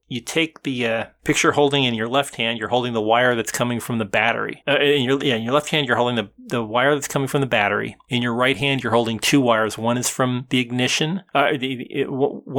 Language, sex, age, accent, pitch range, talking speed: English, male, 30-49, American, 115-140 Hz, 255 wpm